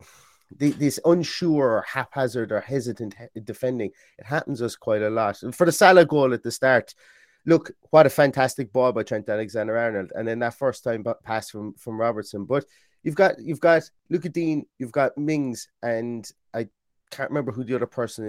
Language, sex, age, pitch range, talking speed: English, male, 30-49, 105-135 Hz, 185 wpm